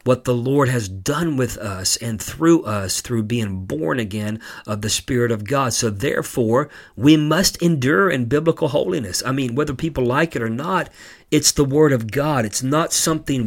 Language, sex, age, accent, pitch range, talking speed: English, male, 50-69, American, 115-150 Hz, 190 wpm